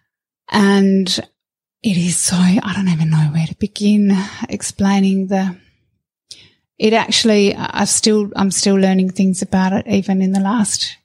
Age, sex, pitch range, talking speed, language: 30-49, female, 195-220 Hz, 160 wpm, English